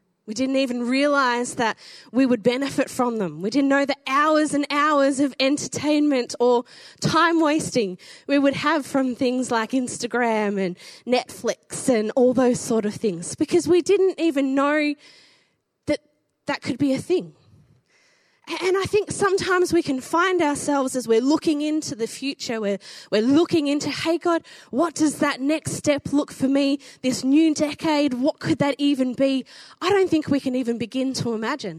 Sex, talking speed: female, 175 wpm